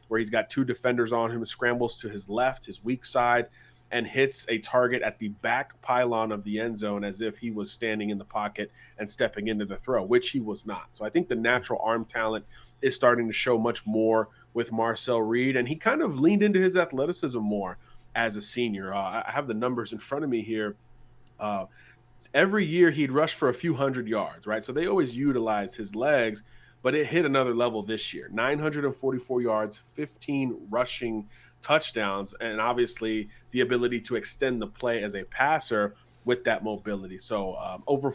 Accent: American